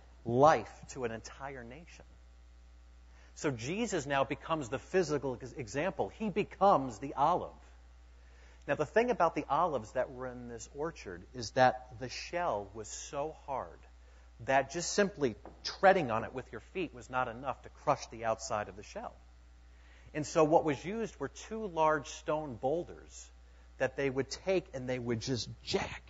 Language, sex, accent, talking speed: English, male, American, 165 wpm